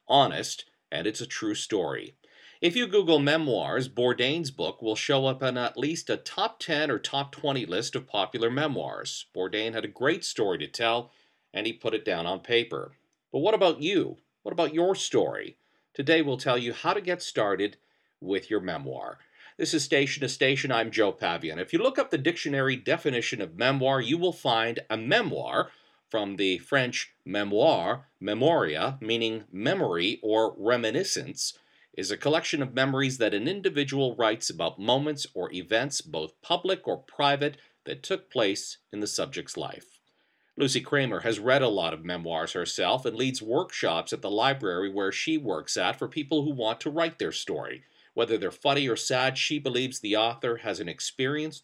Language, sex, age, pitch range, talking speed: English, male, 40-59, 115-160 Hz, 180 wpm